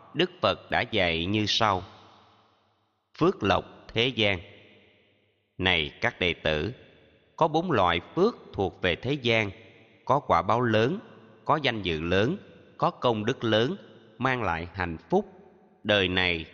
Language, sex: Vietnamese, male